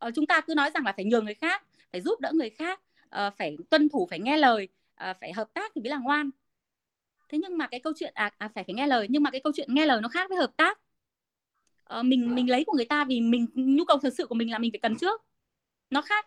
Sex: female